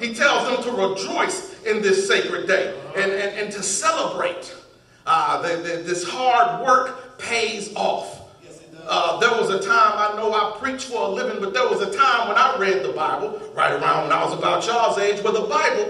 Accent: American